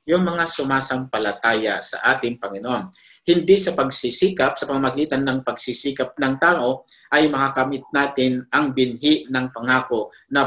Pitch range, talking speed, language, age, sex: 130-170 Hz, 130 wpm, Filipino, 50-69, male